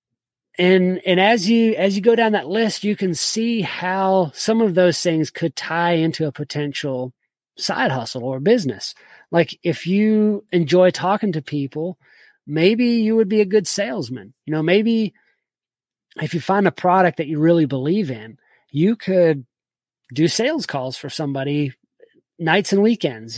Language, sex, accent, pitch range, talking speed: English, male, American, 145-185 Hz, 165 wpm